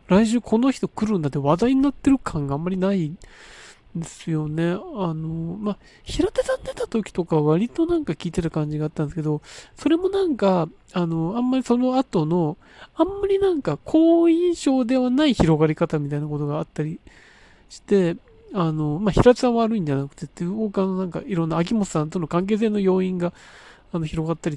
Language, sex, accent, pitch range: Japanese, male, native, 165-265 Hz